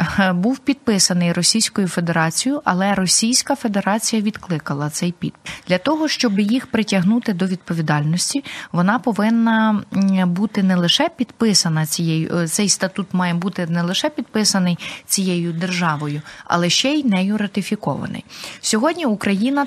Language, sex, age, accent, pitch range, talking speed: Ukrainian, female, 30-49, native, 175-220 Hz, 120 wpm